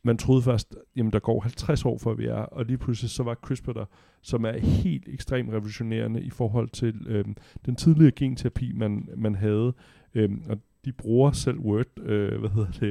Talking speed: 195 wpm